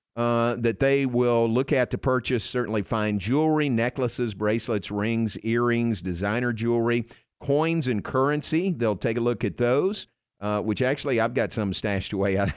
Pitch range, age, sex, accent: 105-130 Hz, 50-69, male, American